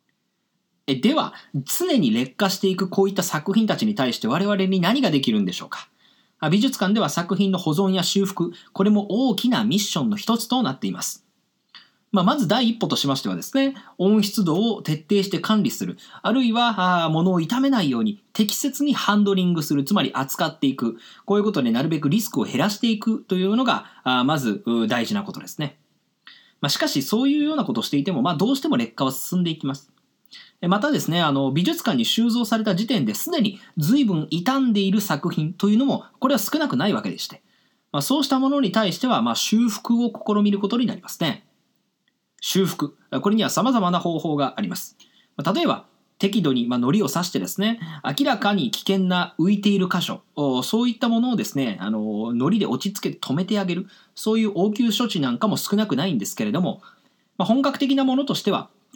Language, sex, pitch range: English, male, 180-235 Hz